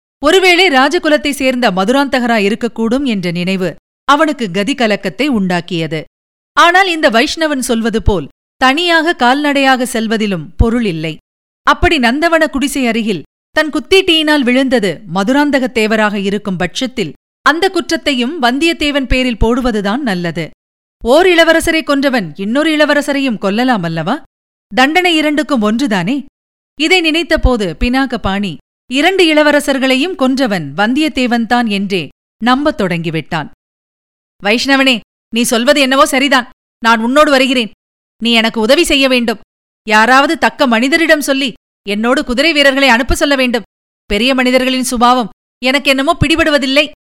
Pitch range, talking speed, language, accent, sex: 225-290 Hz, 105 wpm, Tamil, native, female